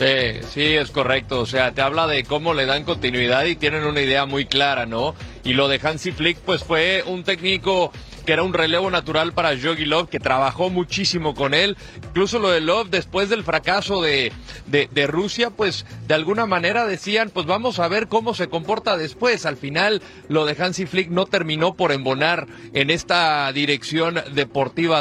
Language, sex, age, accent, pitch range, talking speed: Spanish, male, 40-59, Mexican, 140-180 Hz, 190 wpm